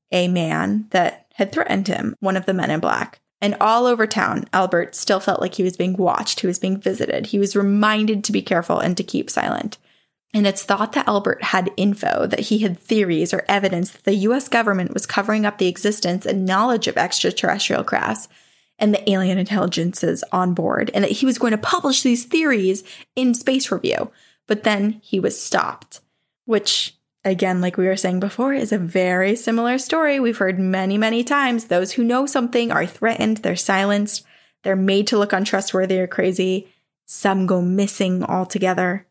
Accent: American